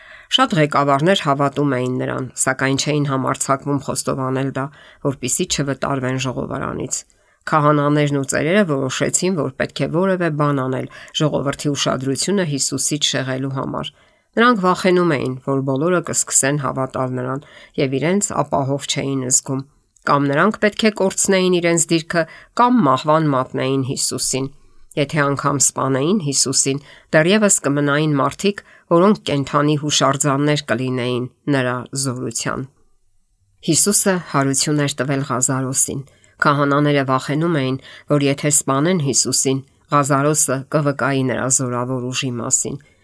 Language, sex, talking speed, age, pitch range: English, female, 95 wpm, 50-69, 130-155 Hz